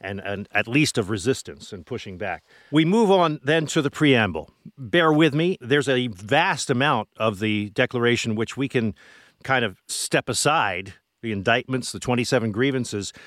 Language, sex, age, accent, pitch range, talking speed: English, male, 50-69, American, 115-150 Hz, 170 wpm